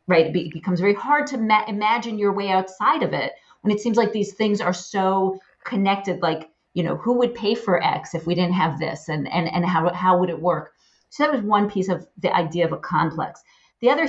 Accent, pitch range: American, 170-215 Hz